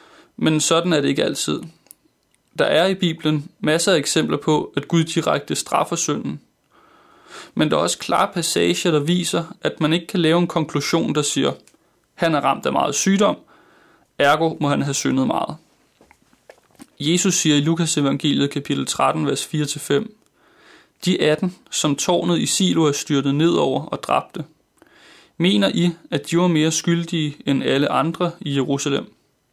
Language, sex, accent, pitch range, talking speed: Danish, male, native, 145-170 Hz, 165 wpm